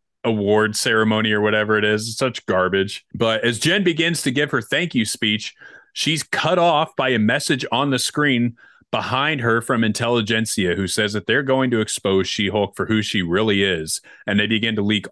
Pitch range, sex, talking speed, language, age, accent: 100-130 Hz, male, 200 wpm, English, 30-49, American